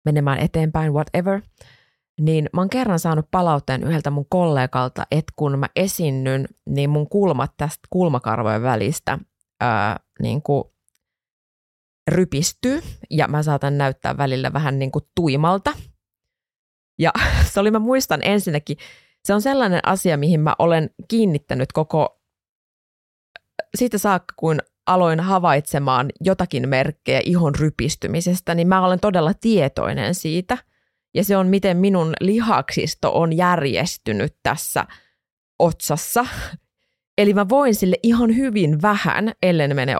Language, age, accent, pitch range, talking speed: Finnish, 20-39, native, 145-195 Hz, 125 wpm